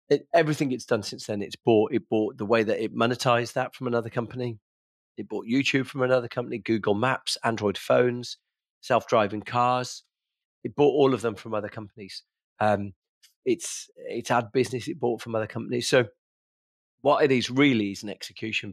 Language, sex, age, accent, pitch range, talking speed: English, male, 40-59, British, 105-125 Hz, 185 wpm